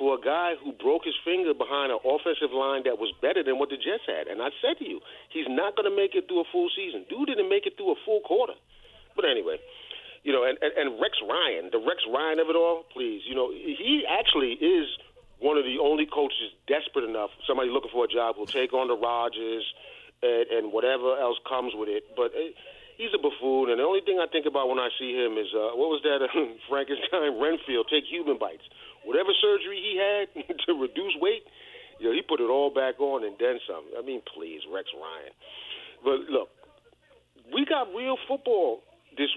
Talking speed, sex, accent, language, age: 220 wpm, male, American, English, 40-59